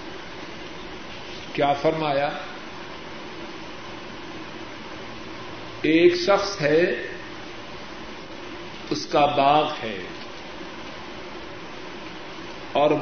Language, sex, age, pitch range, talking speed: Urdu, male, 50-69, 170-240 Hz, 45 wpm